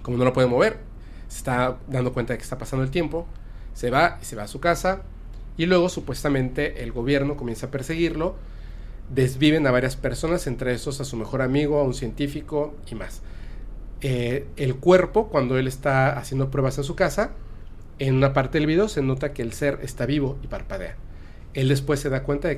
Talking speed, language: 205 wpm, Spanish